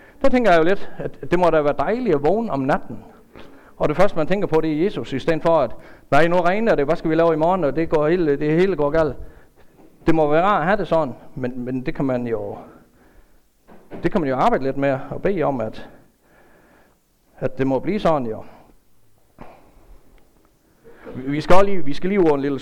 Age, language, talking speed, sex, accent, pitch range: 60-79, Danish, 230 wpm, male, native, 135-180 Hz